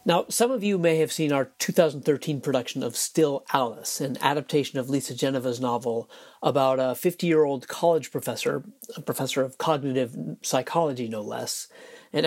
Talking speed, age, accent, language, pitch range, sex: 155 wpm, 40-59, American, English, 130-175 Hz, male